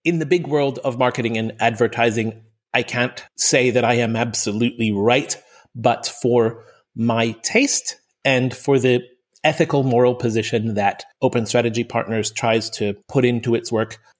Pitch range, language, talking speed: 115-145 Hz, English, 150 wpm